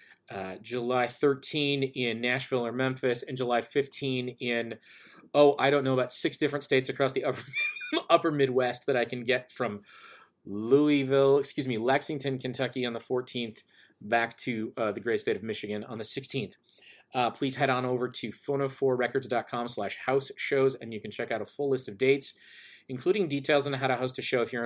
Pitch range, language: 120-140 Hz, English